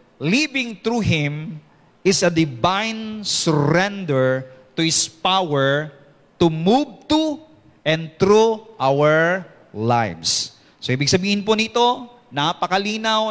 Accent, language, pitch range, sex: Filipino, English, 165-215 Hz, male